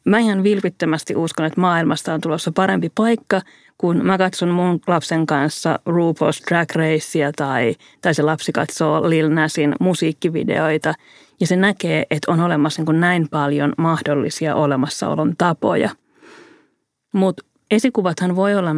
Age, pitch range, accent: 30-49, 150-185 Hz, native